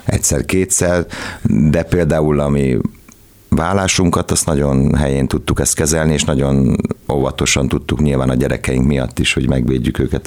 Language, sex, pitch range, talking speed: Hungarian, male, 70-80 Hz, 140 wpm